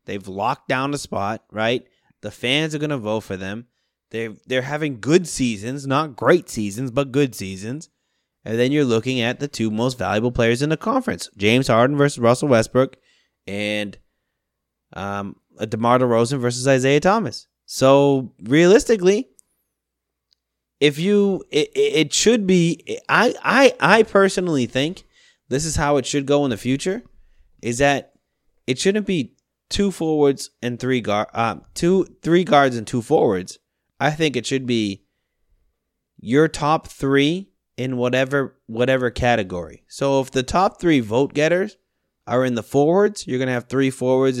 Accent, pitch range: American, 115-160 Hz